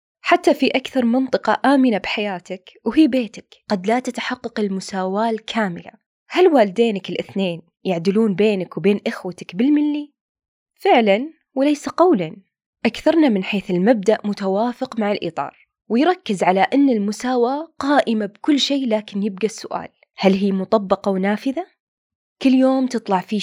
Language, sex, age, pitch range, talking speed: Arabic, female, 20-39, 195-260 Hz, 125 wpm